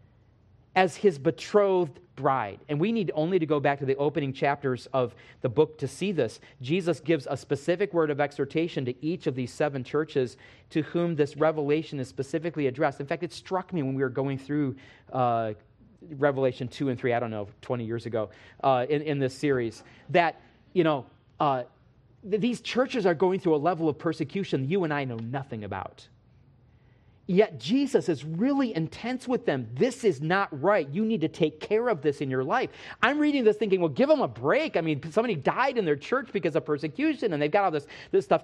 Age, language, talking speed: 40-59, English, 210 wpm